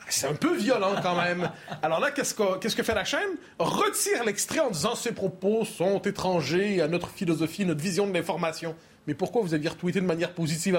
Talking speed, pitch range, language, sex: 210 wpm, 160-235 Hz, French, male